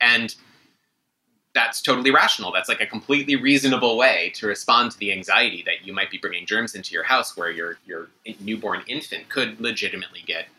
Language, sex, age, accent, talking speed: English, male, 30-49, American, 180 wpm